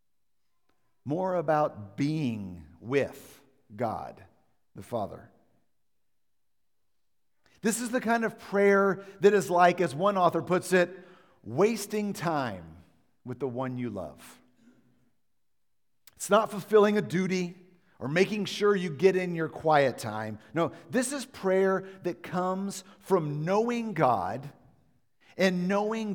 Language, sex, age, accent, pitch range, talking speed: English, male, 50-69, American, 145-200 Hz, 120 wpm